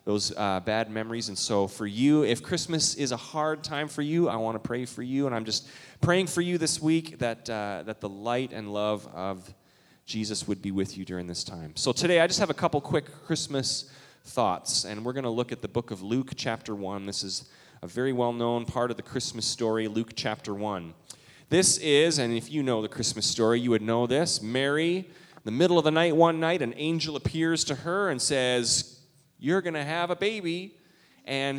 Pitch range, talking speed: 115-160 Hz, 220 wpm